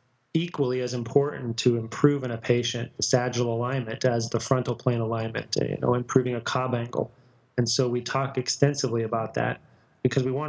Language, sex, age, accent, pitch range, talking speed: English, male, 30-49, American, 120-130 Hz, 185 wpm